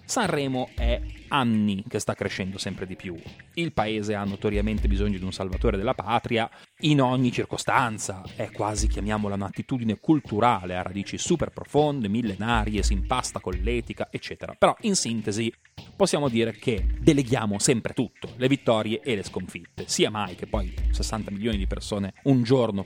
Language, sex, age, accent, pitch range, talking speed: Italian, male, 30-49, native, 100-135 Hz, 160 wpm